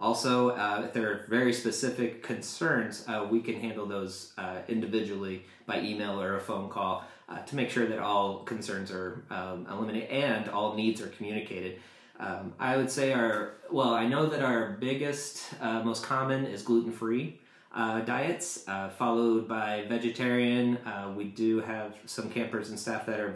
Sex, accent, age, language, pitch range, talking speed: male, American, 30-49, English, 105-125 Hz, 170 wpm